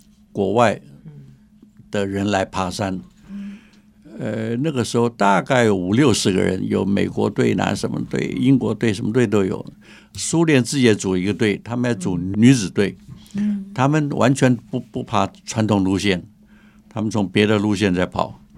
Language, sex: Chinese, male